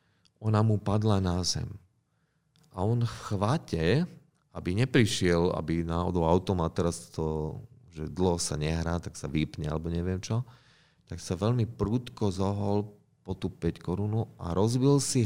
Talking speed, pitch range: 145 wpm, 90-125 Hz